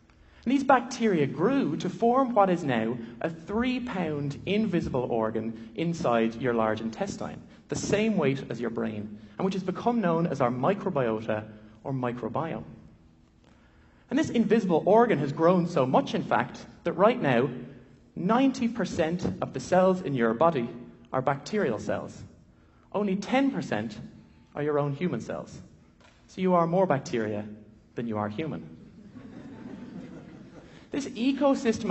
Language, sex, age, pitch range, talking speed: English, male, 30-49, 130-200 Hz, 135 wpm